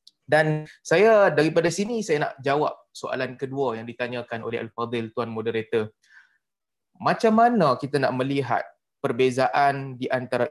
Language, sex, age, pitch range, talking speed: Malayalam, male, 20-39, 120-165 Hz, 130 wpm